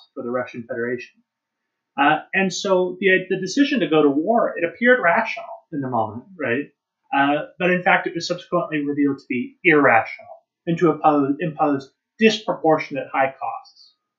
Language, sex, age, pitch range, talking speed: English, male, 30-49, 135-180 Hz, 160 wpm